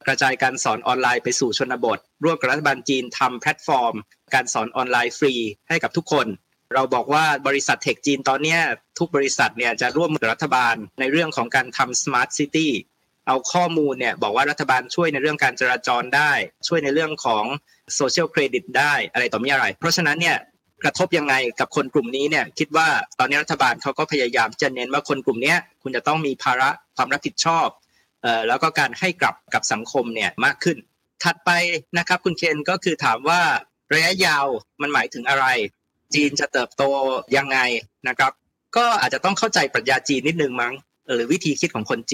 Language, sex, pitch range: Thai, male, 130-165 Hz